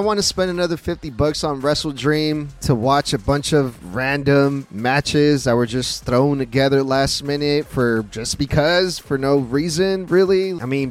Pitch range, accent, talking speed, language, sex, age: 135-165 Hz, American, 180 wpm, English, male, 20-39